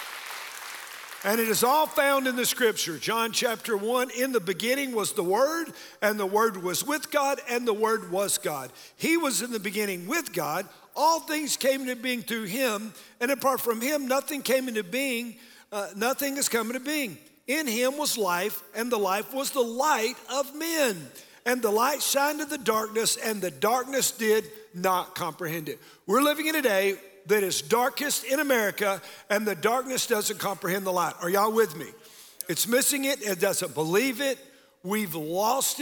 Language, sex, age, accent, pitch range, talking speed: English, male, 50-69, American, 205-275 Hz, 190 wpm